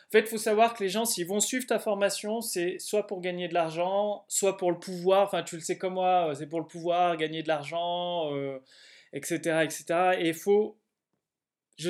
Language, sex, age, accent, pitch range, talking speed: French, male, 20-39, French, 170-215 Hz, 210 wpm